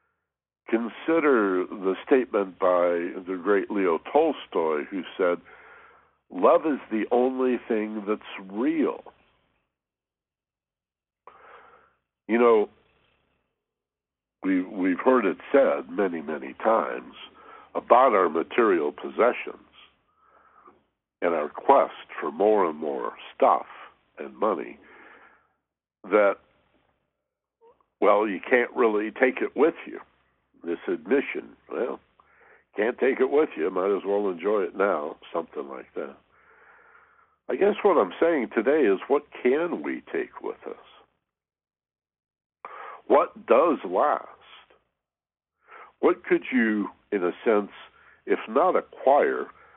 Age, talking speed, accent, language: 60-79, 110 wpm, American, English